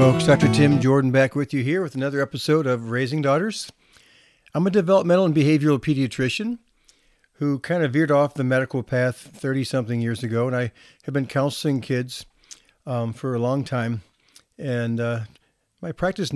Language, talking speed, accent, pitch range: English, 170 wpm, American, 125-150 Hz